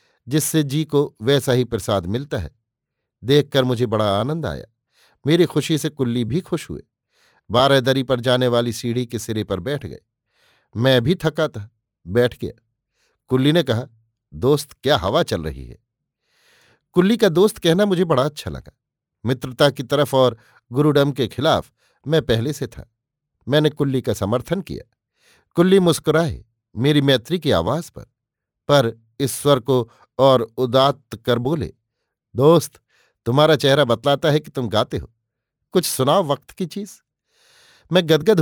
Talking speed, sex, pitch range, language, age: 155 wpm, male, 120-150 Hz, Hindi, 50-69